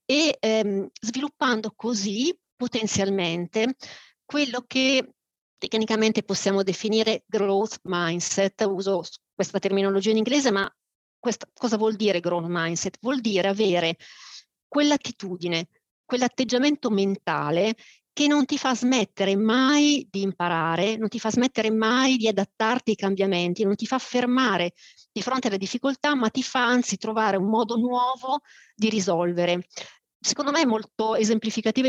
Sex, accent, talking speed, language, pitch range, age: female, native, 130 wpm, Italian, 195-260 Hz, 40-59